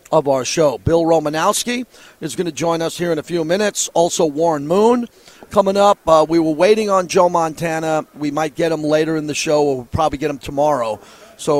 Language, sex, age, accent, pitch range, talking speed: English, male, 40-59, American, 150-175 Hz, 215 wpm